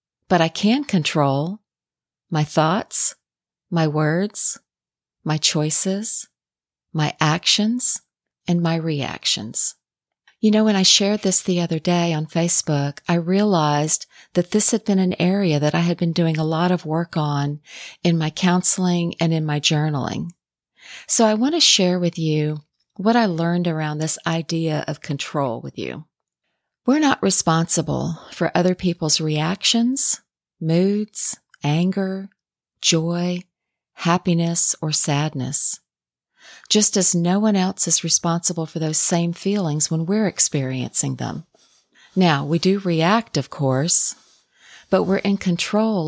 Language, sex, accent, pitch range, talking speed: English, female, American, 155-195 Hz, 140 wpm